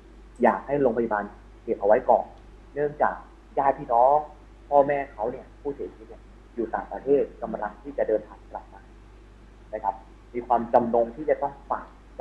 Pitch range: 110-145 Hz